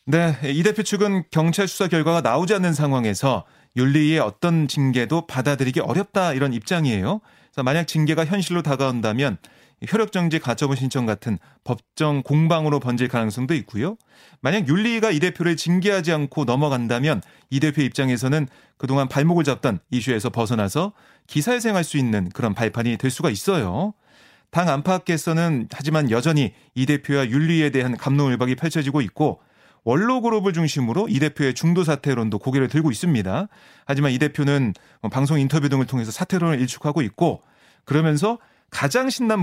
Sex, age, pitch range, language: male, 30-49, 130-175 Hz, Korean